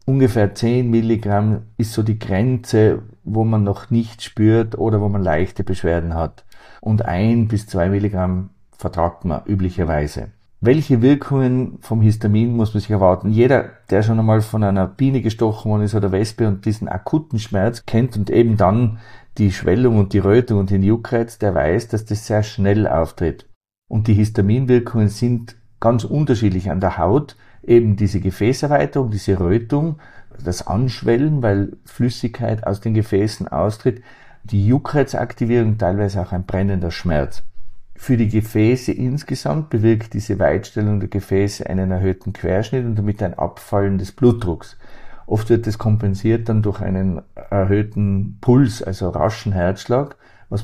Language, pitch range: German, 95-115 Hz